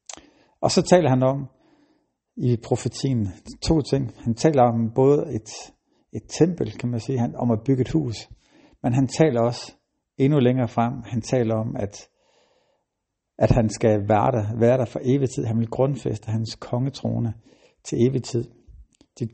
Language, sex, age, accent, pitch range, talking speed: Danish, male, 60-79, native, 110-130 Hz, 160 wpm